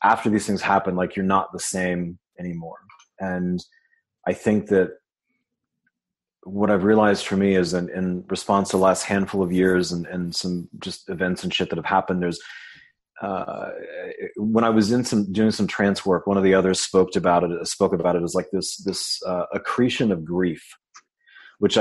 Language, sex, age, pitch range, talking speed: English, male, 30-49, 90-100 Hz, 190 wpm